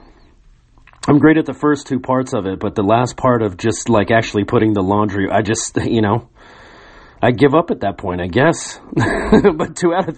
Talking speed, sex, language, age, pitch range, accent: 210 wpm, male, English, 30-49, 105-145 Hz, American